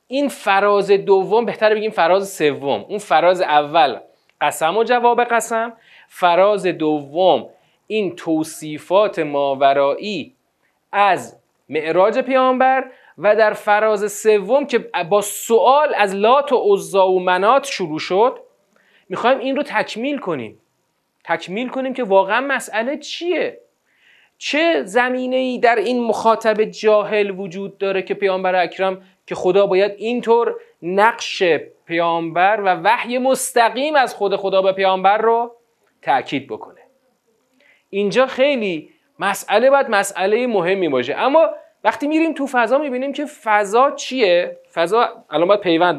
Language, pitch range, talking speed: Persian, 190-260 Hz, 125 wpm